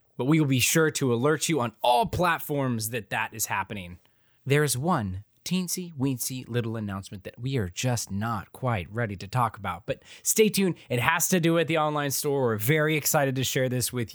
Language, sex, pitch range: English, male, 115-140 Hz